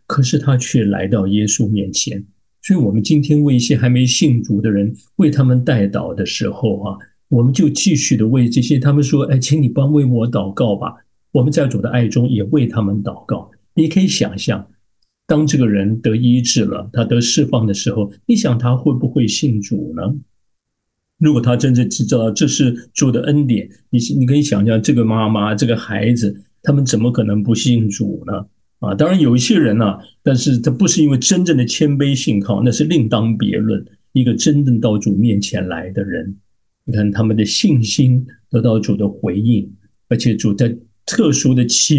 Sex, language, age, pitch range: male, Chinese, 50-69, 105-130 Hz